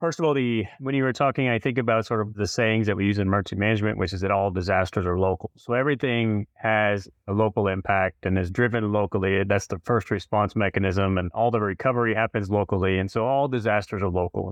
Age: 30-49